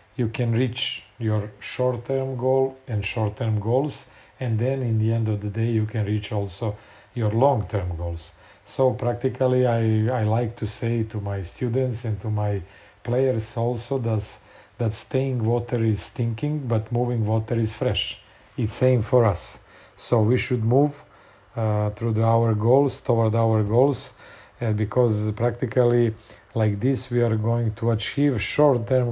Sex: male